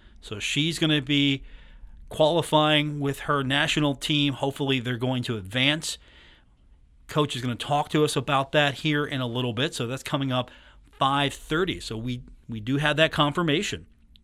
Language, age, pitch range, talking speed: English, 40-59, 115-145 Hz, 175 wpm